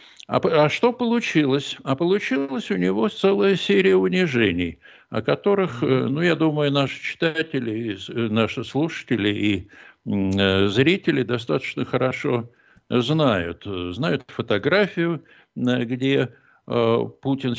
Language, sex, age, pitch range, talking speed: Russian, male, 60-79, 105-135 Hz, 100 wpm